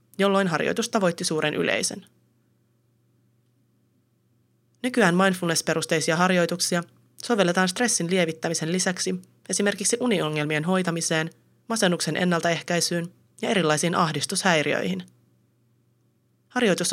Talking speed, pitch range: 75 wpm, 145-190 Hz